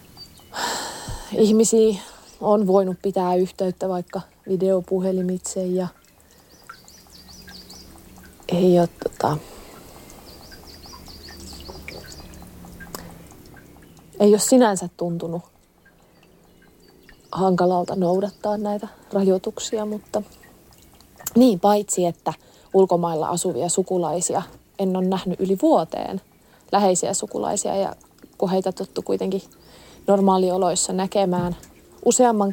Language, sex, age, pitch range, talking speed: Finnish, female, 30-49, 170-200 Hz, 70 wpm